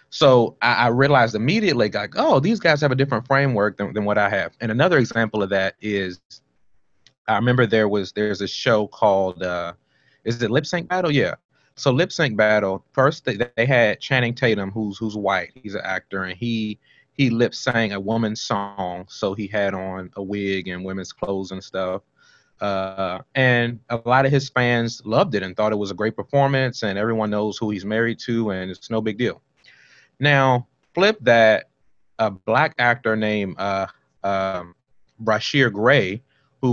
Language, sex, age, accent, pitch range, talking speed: English, male, 30-49, American, 100-125 Hz, 185 wpm